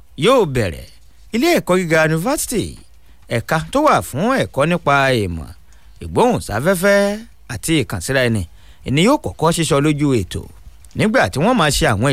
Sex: male